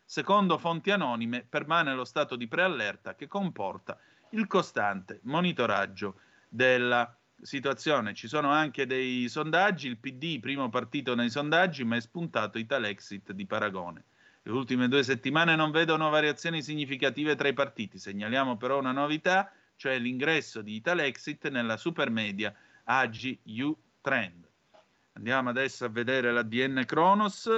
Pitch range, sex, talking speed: 115-150 Hz, male, 135 wpm